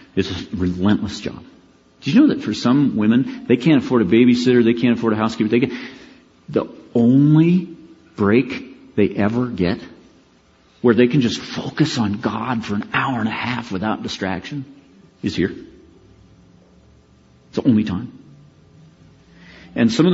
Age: 40-59